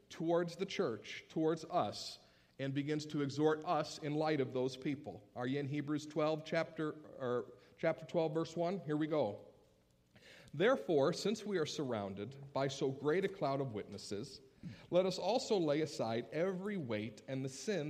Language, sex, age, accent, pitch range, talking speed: English, male, 50-69, American, 120-180 Hz, 170 wpm